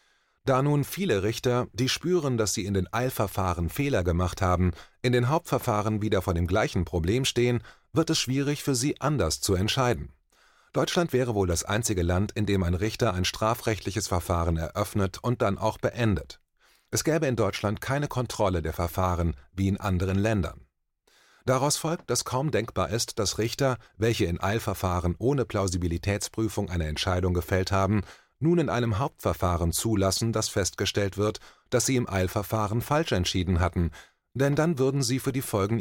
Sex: male